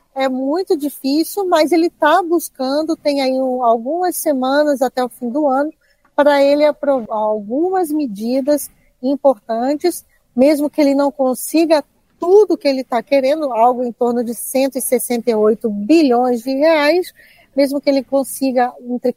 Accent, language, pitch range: Brazilian, Portuguese, 245-305 Hz